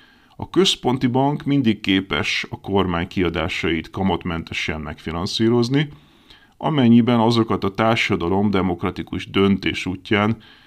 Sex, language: male, Hungarian